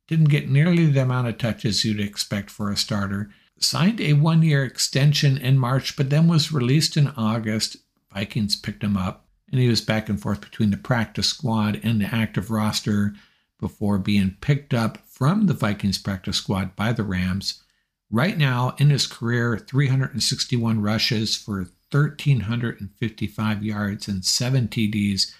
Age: 60-79